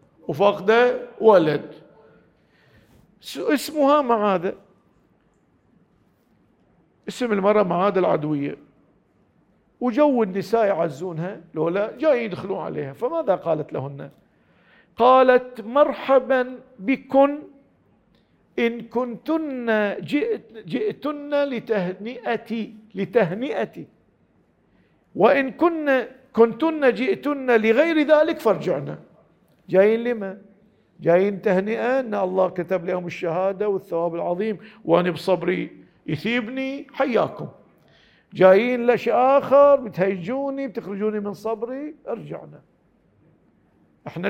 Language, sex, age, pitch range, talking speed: Arabic, male, 50-69, 185-250 Hz, 80 wpm